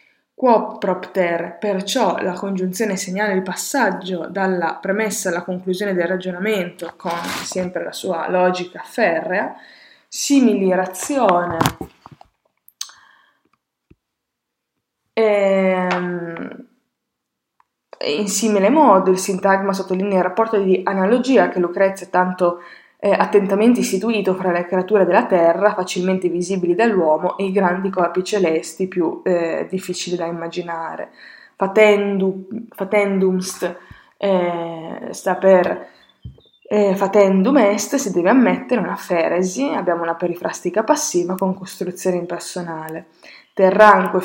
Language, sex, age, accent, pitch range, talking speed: Italian, female, 20-39, native, 175-205 Hz, 105 wpm